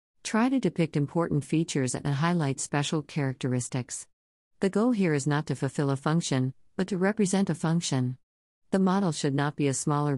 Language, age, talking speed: German, 50-69, 175 wpm